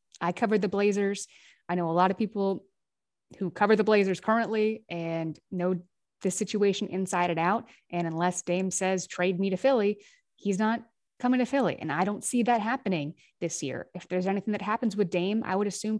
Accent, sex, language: American, female, English